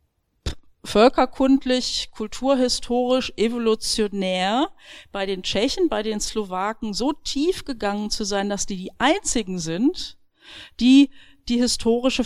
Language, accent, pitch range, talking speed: German, German, 210-265 Hz, 110 wpm